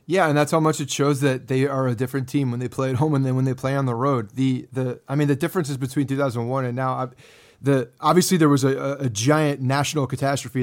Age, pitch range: 30-49, 130-155 Hz